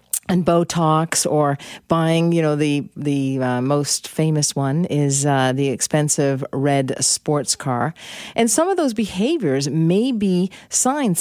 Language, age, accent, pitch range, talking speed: English, 50-69, American, 145-205 Hz, 140 wpm